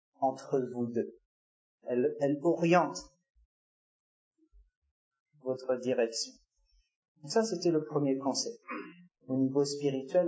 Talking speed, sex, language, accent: 100 wpm, male, French, French